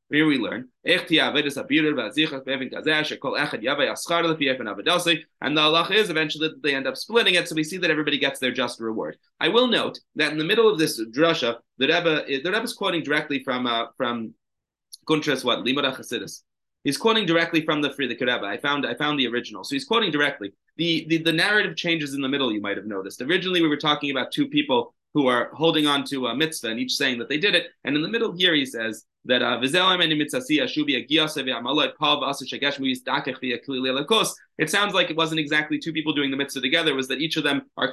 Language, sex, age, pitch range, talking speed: English, male, 30-49, 125-160 Hz, 195 wpm